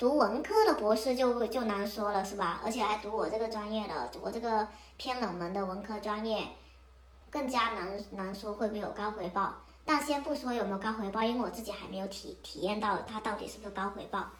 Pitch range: 200-240 Hz